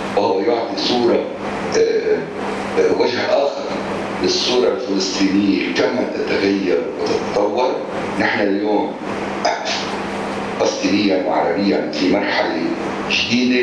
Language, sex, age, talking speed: English, male, 60-79, 80 wpm